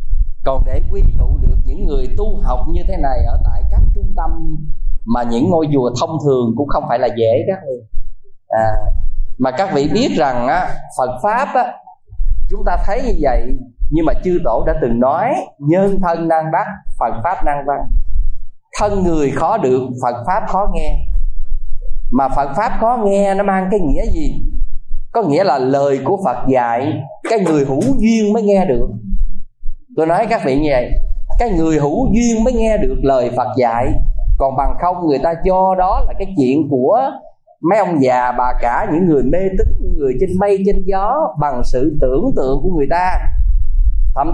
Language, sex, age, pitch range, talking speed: Vietnamese, male, 20-39, 120-195 Hz, 185 wpm